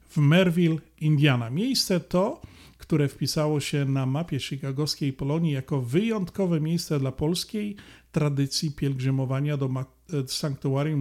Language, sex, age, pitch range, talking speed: Polish, male, 40-59, 135-165 Hz, 115 wpm